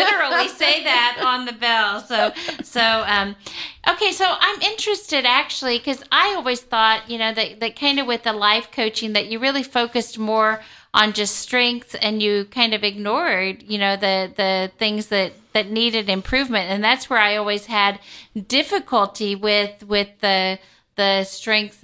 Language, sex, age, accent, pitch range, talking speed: English, female, 40-59, American, 205-265 Hz, 170 wpm